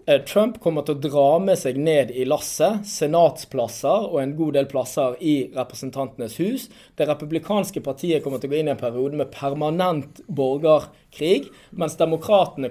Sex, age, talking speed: male, 20-39, 150 wpm